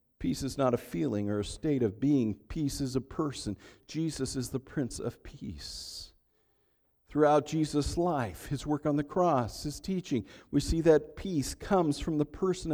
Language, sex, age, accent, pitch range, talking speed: English, male, 50-69, American, 130-200 Hz, 180 wpm